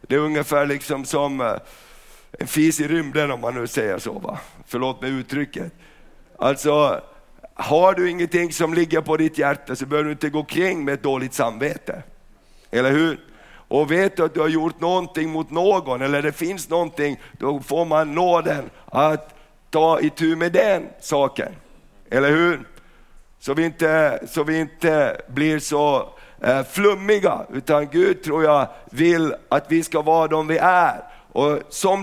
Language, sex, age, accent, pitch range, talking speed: Swedish, male, 50-69, native, 145-170 Hz, 170 wpm